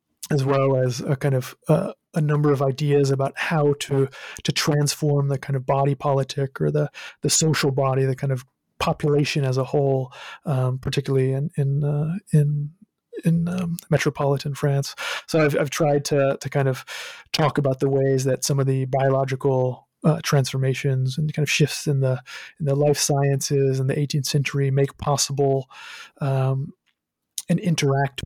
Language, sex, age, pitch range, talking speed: English, male, 30-49, 135-150 Hz, 170 wpm